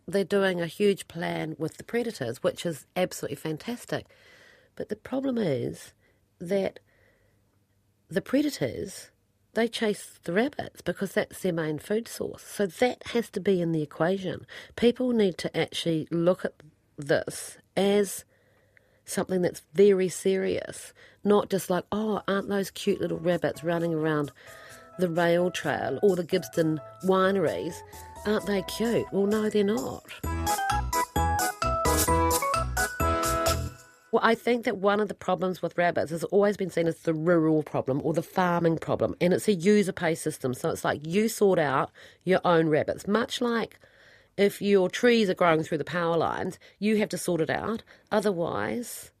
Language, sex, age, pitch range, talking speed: English, female, 40-59, 160-205 Hz, 155 wpm